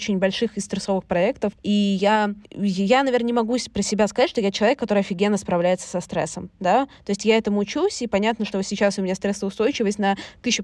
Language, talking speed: Russian, 215 wpm